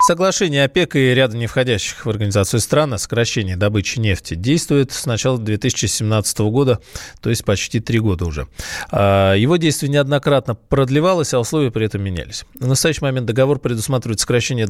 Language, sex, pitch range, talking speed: Russian, male, 105-135 Hz, 160 wpm